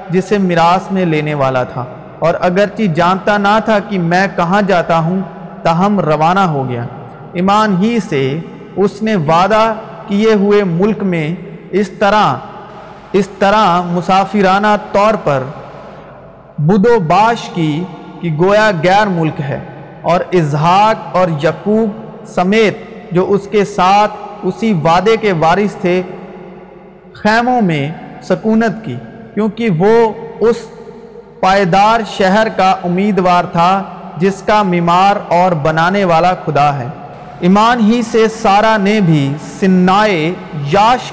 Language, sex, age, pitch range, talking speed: Urdu, male, 40-59, 170-210 Hz, 125 wpm